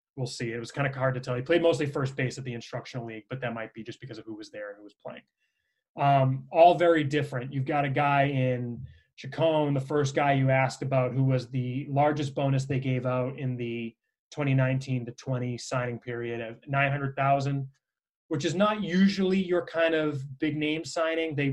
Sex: male